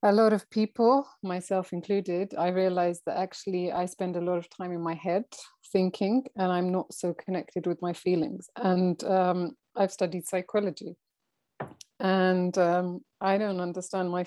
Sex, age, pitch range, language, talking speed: female, 30-49, 175-195 Hz, English, 165 wpm